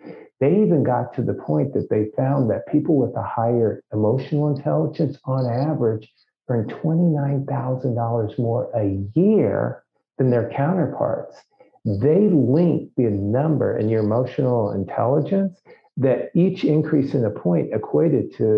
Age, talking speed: 50-69, 135 wpm